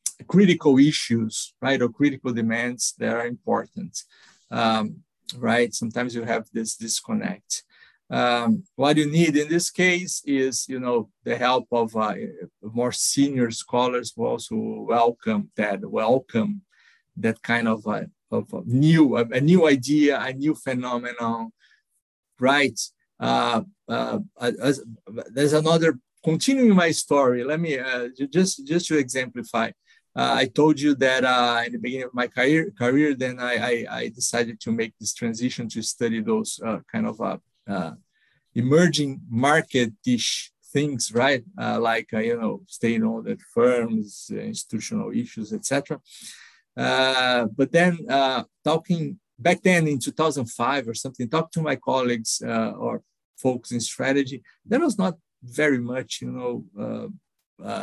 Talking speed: 145 wpm